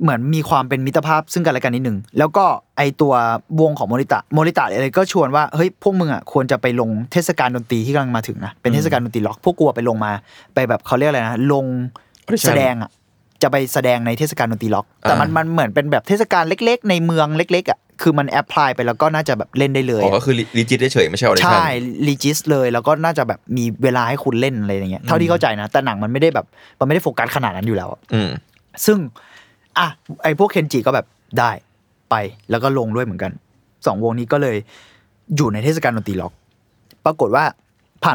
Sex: male